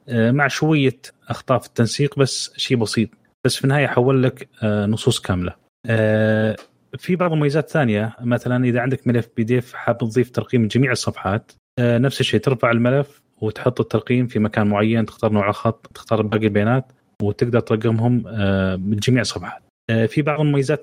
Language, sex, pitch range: Arabic, male, 110-130 Hz